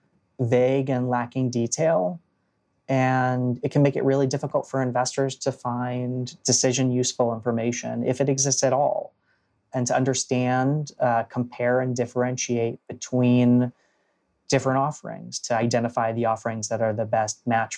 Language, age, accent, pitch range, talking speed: English, 30-49, American, 115-130 Hz, 140 wpm